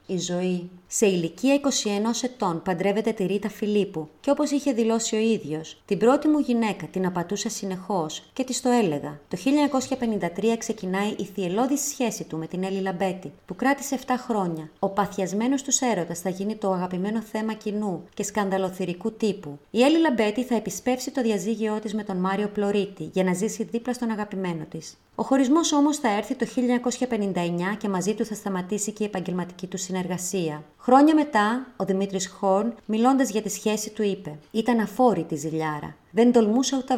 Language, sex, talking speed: Greek, female, 175 wpm